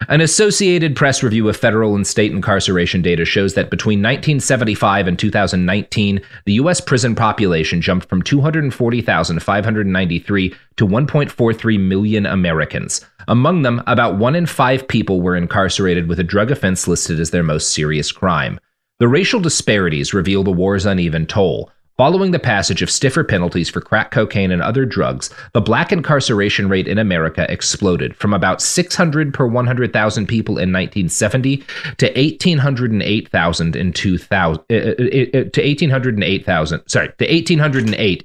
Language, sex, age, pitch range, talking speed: English, male, 30-49, 95-140 Hz, 140 wpm